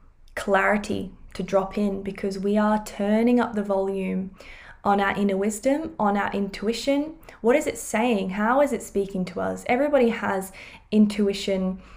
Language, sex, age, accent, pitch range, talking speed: English, female, 20-39, Australian, 190-215 Hz, 155 wpm